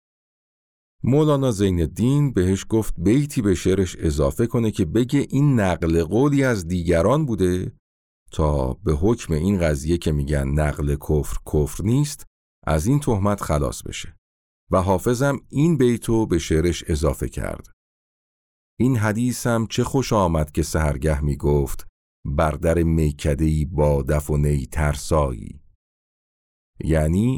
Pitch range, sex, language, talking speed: 75-115 Hz, male, Persian, 125 wpm